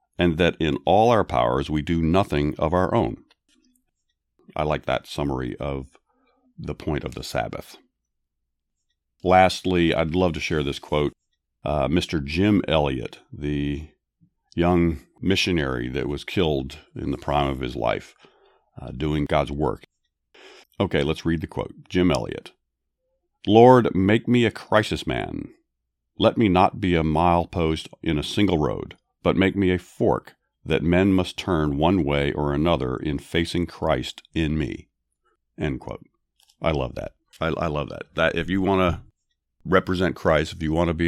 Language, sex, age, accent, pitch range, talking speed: English, male, 50-69, American, 70-90 Hz, 160 wpm